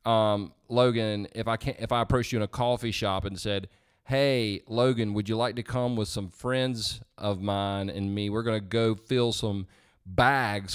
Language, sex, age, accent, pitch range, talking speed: English, male, 30-49, American, 105-135 Hz, 200 wpm